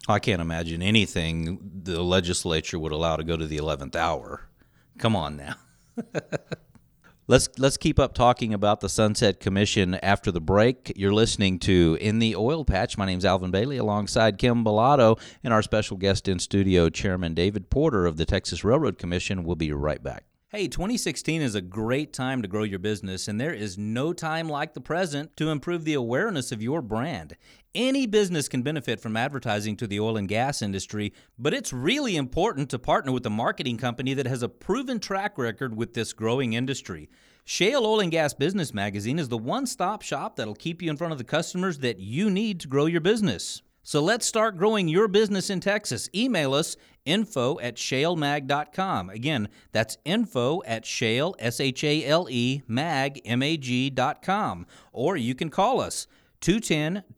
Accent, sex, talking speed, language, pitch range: American, male, 185 wpm, English, 105-155 Hz